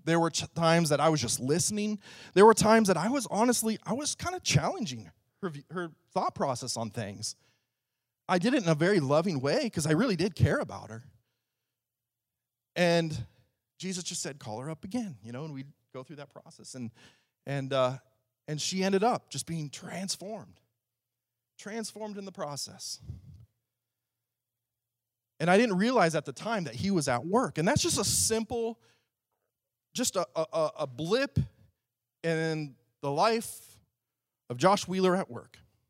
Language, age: English, 30-49